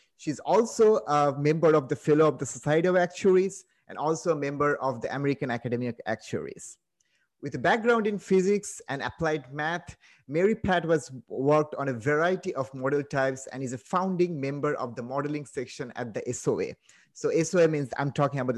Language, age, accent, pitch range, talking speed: English, 30-49, Indian, 130-165 Hz, 185 wpm